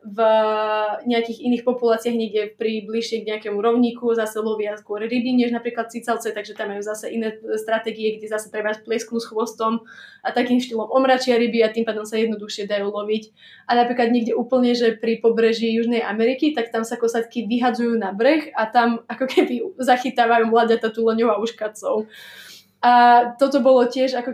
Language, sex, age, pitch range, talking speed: Slovak, female, 20-39, 215-240 Hz, 175 wpm